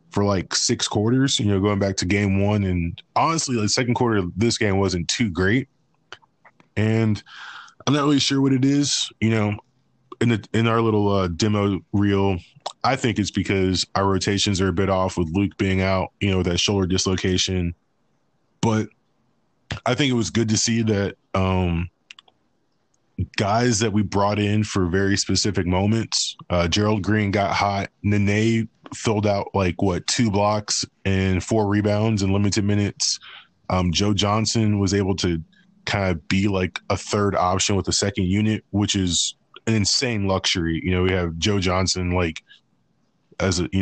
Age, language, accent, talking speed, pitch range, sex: 20-39, English, American, 180 wpm, 95-110 Hz, male